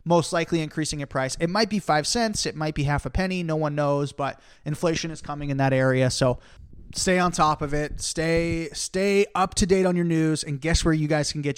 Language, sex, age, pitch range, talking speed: English, male, 30-49, 135-170 Hz, 245 wpm